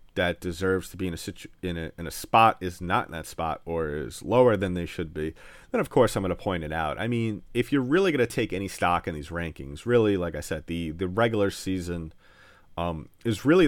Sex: male